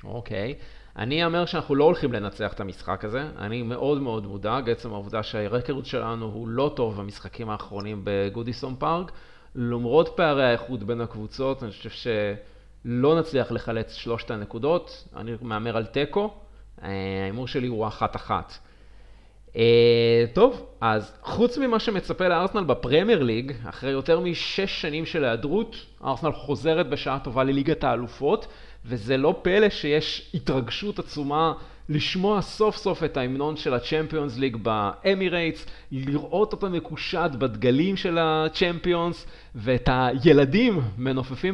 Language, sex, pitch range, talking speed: Hebrew, male, 115-165 Hz, 130 wpm